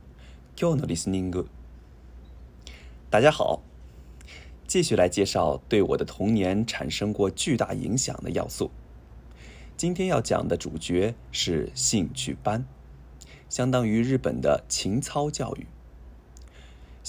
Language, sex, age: Japanese, male, 20-39